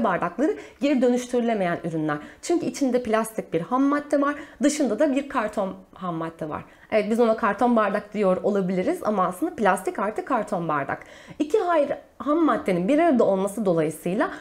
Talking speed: 160 wpm